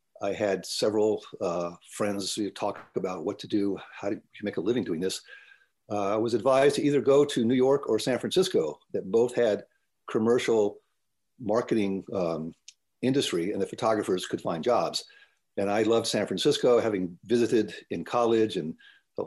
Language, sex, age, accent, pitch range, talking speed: English, male, 50-69, American, 95-125 Hz, 170 wpm